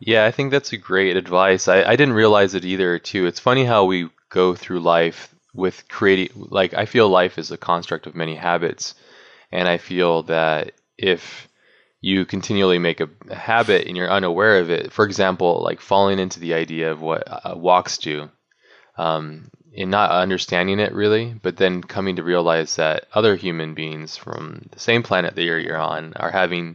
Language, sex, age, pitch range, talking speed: English, male, 20-39, 80-95 Hz, 185 wpm